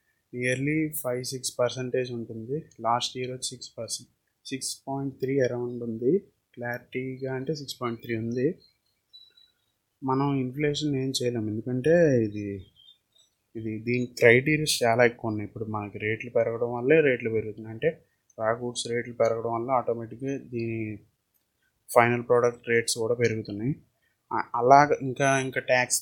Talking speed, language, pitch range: 125 wpm, Telugu, 115-135 Hz